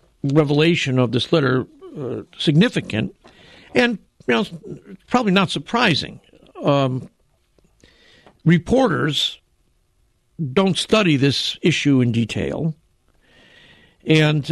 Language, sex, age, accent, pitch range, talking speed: English, male, 60-79, American, 125-170 Hz, 85 wpm